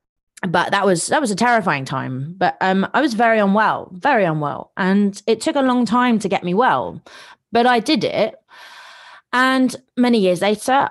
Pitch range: 160-215 Hz